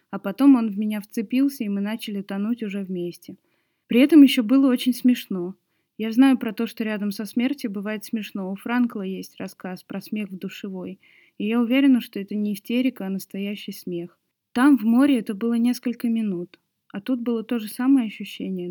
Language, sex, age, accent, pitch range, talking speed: Russian, female, 20-39, native, 195-235 Hz, 190 wpm